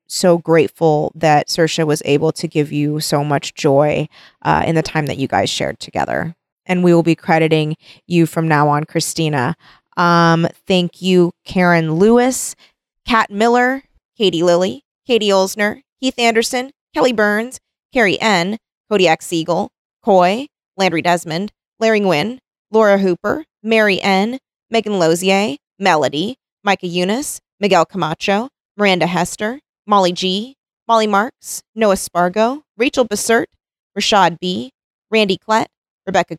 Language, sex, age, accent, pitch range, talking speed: English, female, 20-39, American, 175-230 Hz, 135 wpm